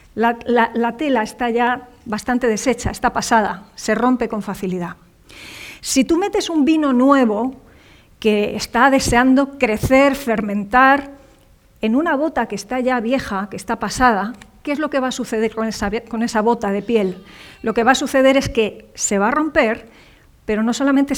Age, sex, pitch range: 40-59, female, 225-285 Hz